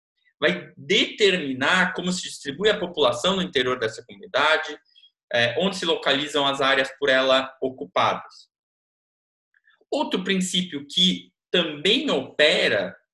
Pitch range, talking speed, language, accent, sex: 135-195 Hz, 110 wpm, English, Brazilian, male